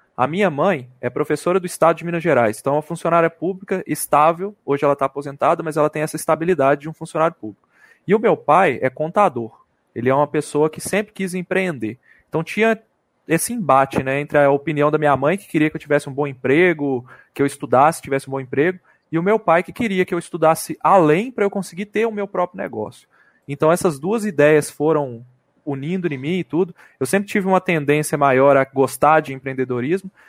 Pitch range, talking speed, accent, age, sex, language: 140-185 Hz, 210 wpm, Brazilian, 20-39, male, Portuguese